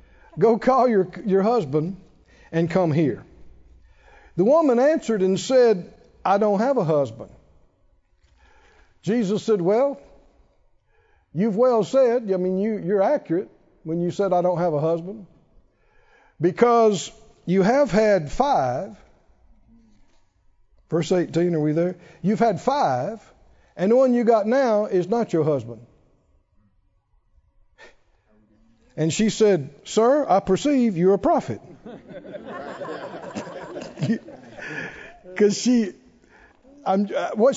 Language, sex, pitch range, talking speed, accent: English, male, 140-230 Hz, 115 wpm, American